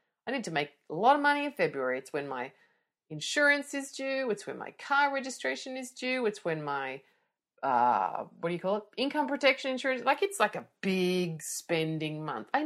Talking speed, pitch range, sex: 205 wpm, 180-280 Hz, female